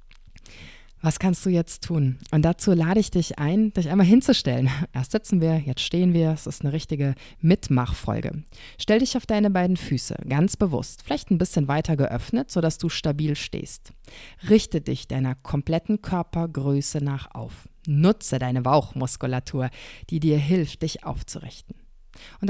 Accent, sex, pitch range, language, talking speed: German, female, 145-200 Hz, German, 155 wpm